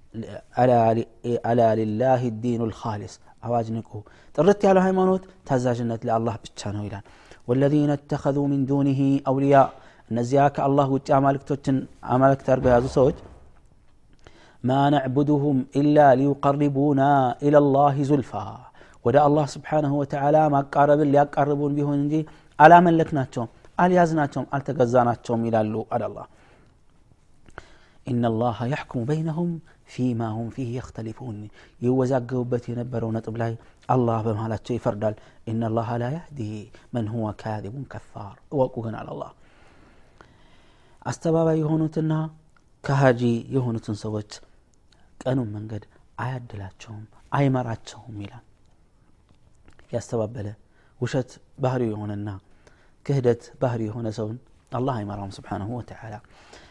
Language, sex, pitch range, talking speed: Amharic, male, 110-140 Hz, 90 wpm